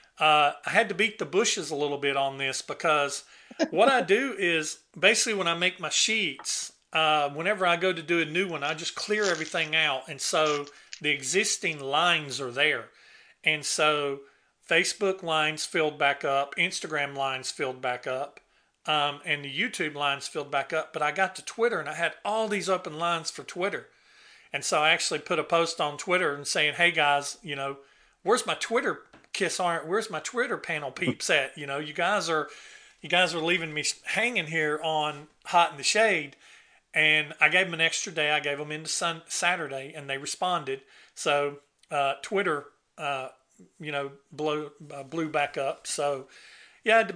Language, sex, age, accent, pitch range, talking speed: English, male, 40-59, American, 145-180 Hz, 195 wpm